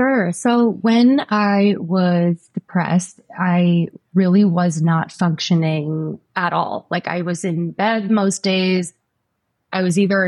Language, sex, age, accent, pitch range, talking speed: English, female, 20-39, American, 175-205 Hz, 135 wpm